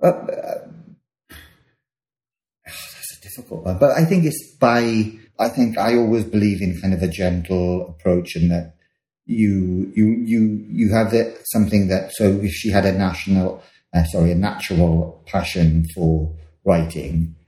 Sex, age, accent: male, 30-49, British